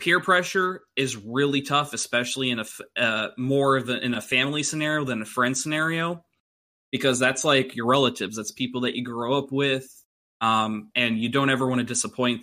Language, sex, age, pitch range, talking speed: English, male, 20-39, 110-130 Hz, 190 wpm